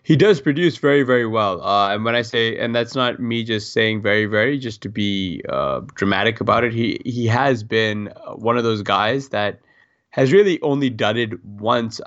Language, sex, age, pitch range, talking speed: English, male, 20-39, 105-125 Hz, 200 wpm